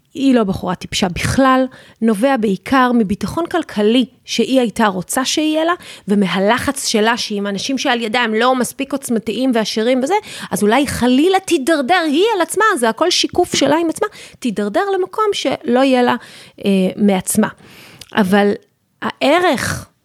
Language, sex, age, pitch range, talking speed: Hebrew, female, 30-49, 200-265 Hz, 145 wpm